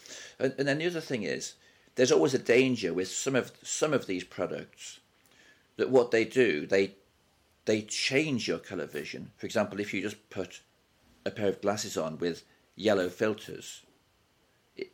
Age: 50-69